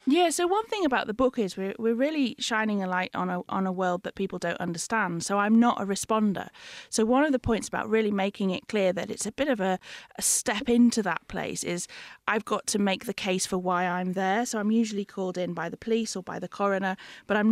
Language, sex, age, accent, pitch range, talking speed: English, female, 30-49, British, 175-210 Hz, 255 wpm